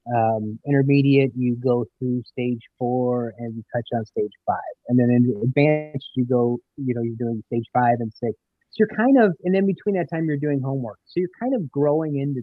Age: 30-49